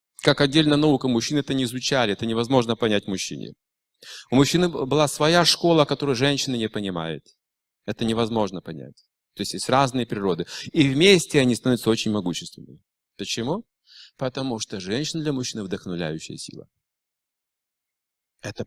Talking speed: 140 wpm